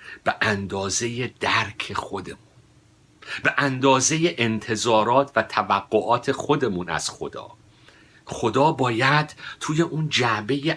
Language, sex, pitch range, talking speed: Persian, male, 95-135 Hz, 95 wpm